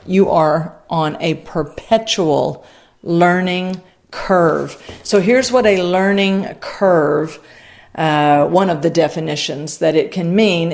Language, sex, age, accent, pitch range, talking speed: English, female, 50-69, American, 165-200 Hz, 125 wpm